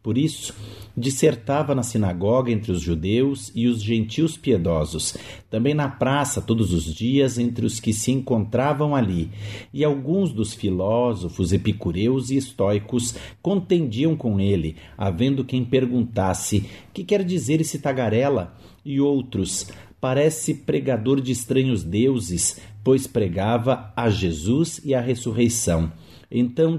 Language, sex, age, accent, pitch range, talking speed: Portuguese, male, 50-69, Brazilian, 105-140 Hz, 130 wpm